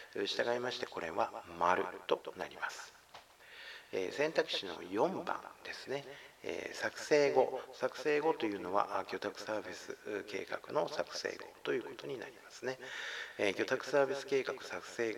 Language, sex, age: Japanese, male, 50-69